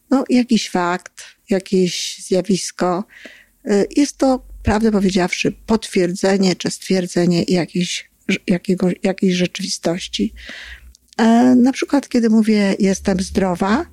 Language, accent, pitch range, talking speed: Polish, native, 185-225 Hz, 85 wpm